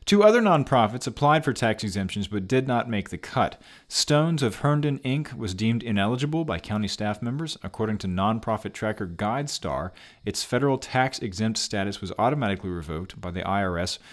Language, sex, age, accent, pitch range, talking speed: English, male, 40-59, American, 95-130 Hz, 170 wpm